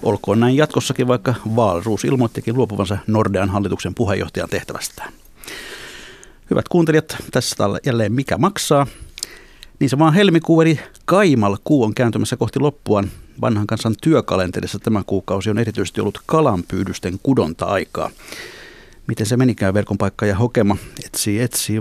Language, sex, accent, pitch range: Finnish, male, native, 100-125 Hz